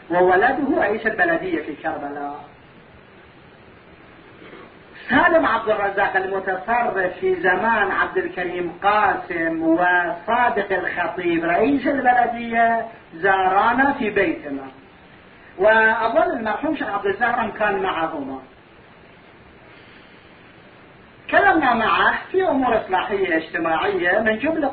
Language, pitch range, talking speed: Arabic, 185-275 Hz, 85 wpm